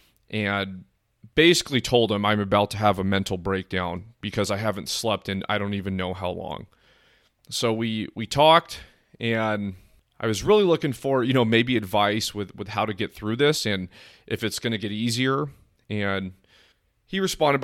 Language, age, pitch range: English, 30-49, 105-120 Hz